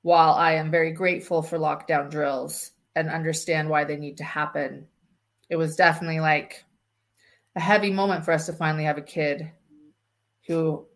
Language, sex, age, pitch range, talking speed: English, female, 30-49, 160-195 Hz, 165 wpm